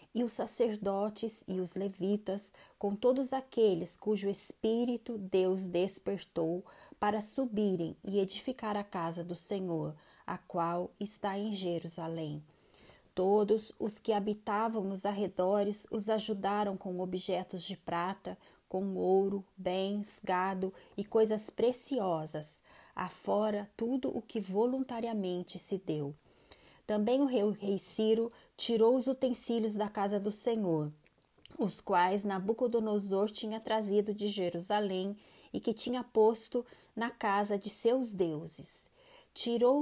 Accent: Brazilian